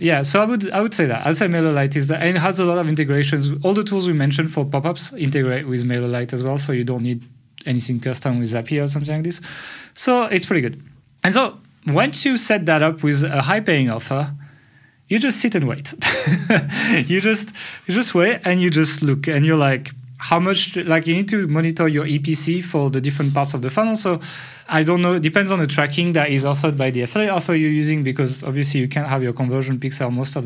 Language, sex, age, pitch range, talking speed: English, male, 30-49, 140-175 Hz, 230 wpm